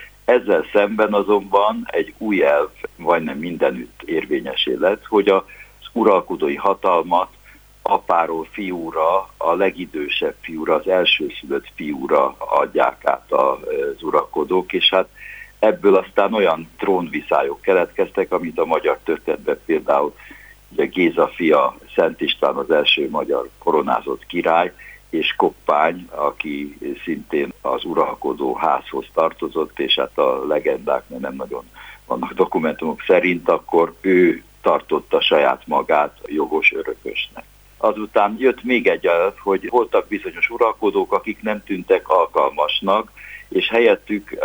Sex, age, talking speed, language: male, 60-79, 115 wpm, Hungarian